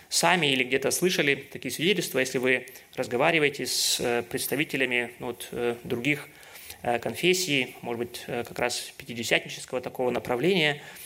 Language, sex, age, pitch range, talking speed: Russian, male, 20-39, 135-185 Hz, 110 wpm